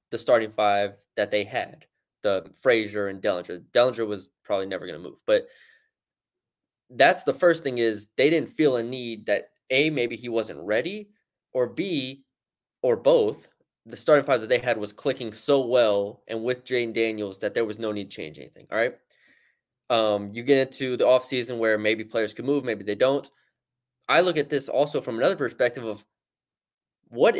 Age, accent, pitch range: 20-39, American, 115-150 Hz